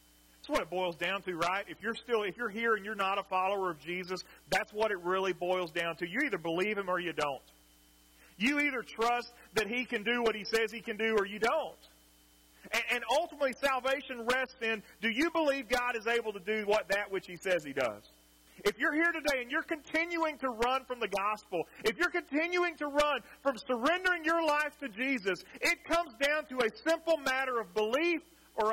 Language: English